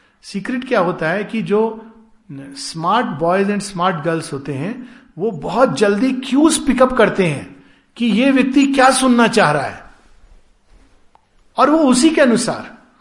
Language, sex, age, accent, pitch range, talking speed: Hindi, male, 50-69, native, 160-230 Hz, 150 wpm